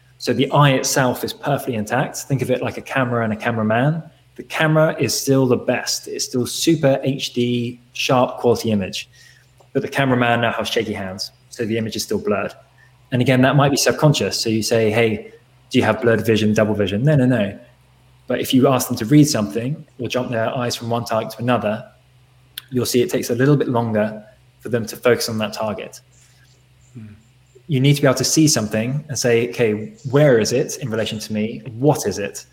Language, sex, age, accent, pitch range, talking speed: English, male, 20-39, British, 110-130 Hz, 210 wpm